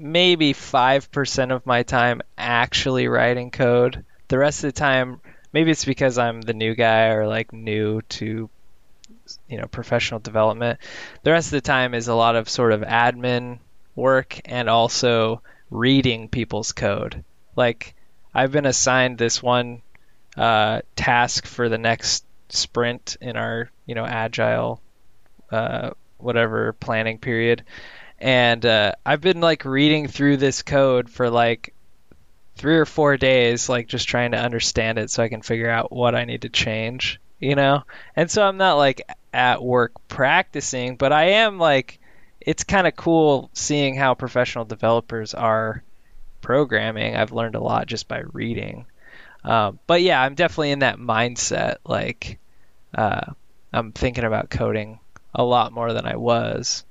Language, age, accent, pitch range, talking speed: English, 20-39, American, 115-135 Hz, 160 wpm